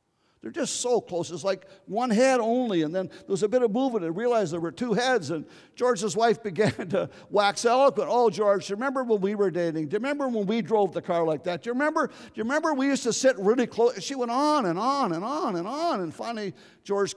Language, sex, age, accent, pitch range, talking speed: English, male, 50-69, American, 180-260 Hz, 250 wpm